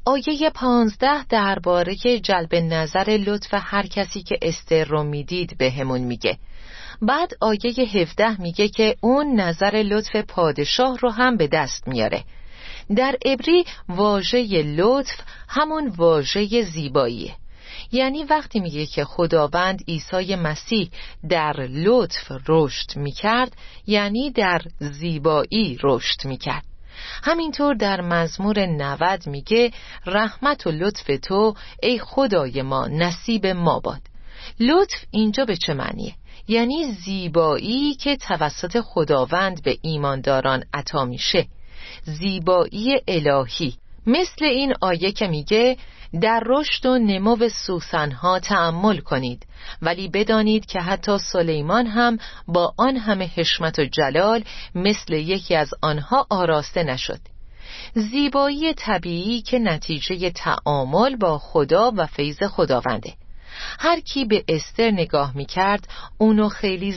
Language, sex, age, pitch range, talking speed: Persian, female, 40-59, 160-235 Hz, 115 wpm